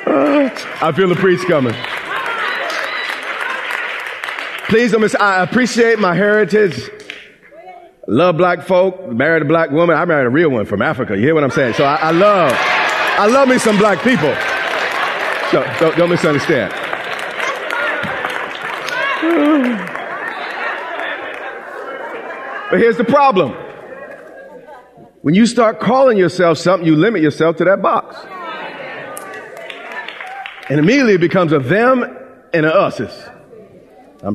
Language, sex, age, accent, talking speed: English, male, 40-59, American, 125 wpm